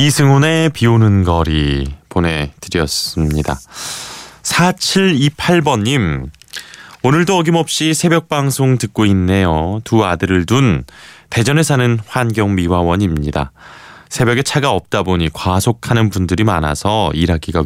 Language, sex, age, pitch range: Korean, male, 20-39, 85-120 Hz